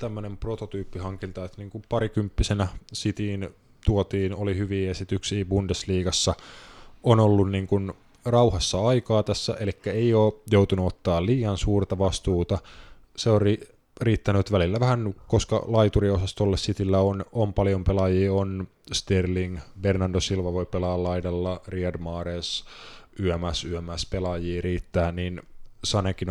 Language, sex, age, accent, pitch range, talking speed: Finnish, male, 20-39, native, 90-105 Hz, 110 wpm